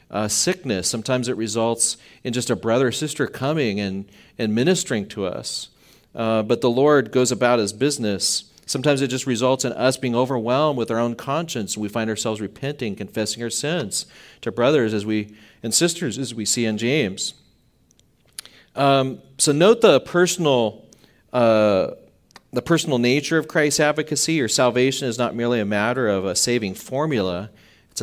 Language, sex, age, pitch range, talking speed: English, male, 40-59, 110-135 Hz, 170 wpm